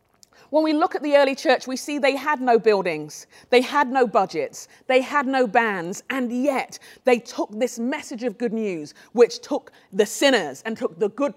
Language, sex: English, female